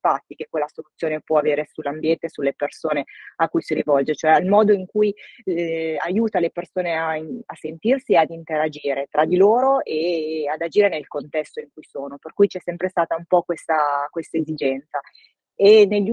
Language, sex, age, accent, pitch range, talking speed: Italian, female, 20-39, native, 155-195 Hz, 190 wpm